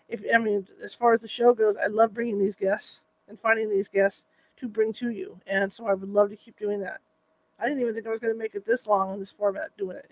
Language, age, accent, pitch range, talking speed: English, 40-59, American, 195-245 Hz, 285 wpm